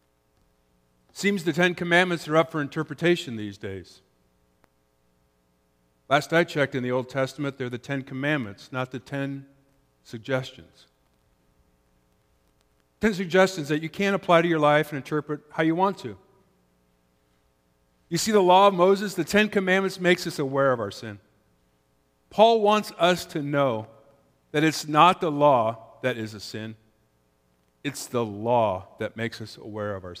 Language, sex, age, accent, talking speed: English, male, 50-69, American, 155 wpm